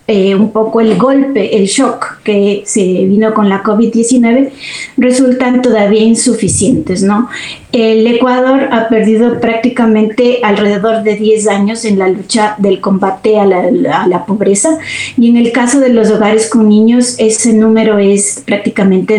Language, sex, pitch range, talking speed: Spanish, female, 210-245 Hz, 155 wpm